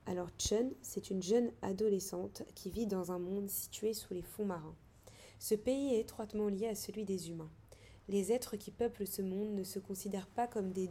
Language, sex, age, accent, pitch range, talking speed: French, female, 20-39, French, 180-220 Hz, 205 wpm